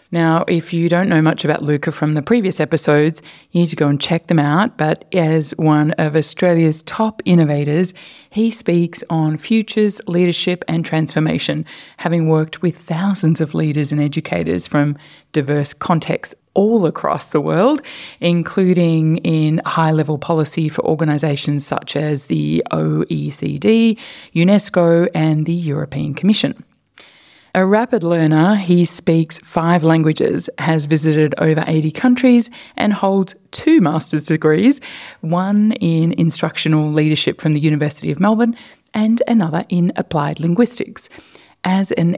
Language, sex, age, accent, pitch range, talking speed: English, female, 20-39, Australian, 155-190 Hz, 140 wpm